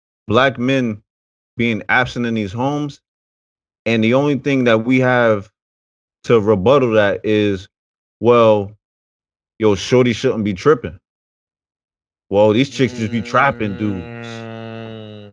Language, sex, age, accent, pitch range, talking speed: English, male, 30-49, American, 105-155 Hz, 120 wpm